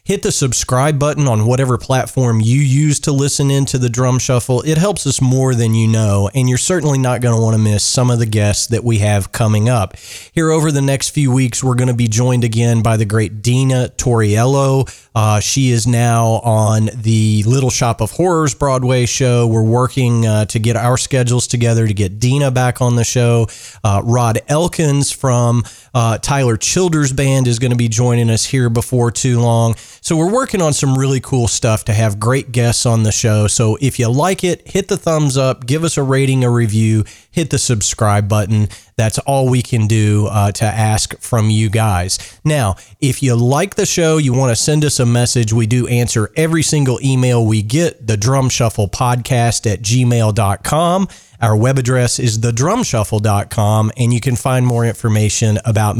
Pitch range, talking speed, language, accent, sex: 110-135 Hz, 200 wpm, English, American, male